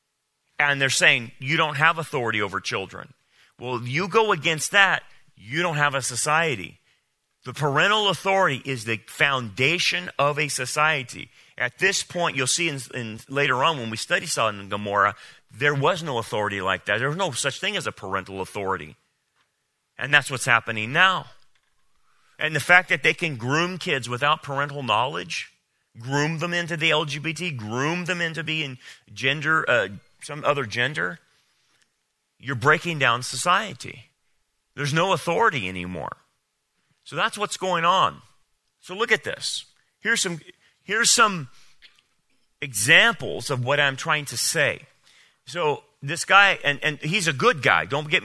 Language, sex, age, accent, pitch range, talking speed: English, male, 30-49, American, 125-170 Hz, 160 wpm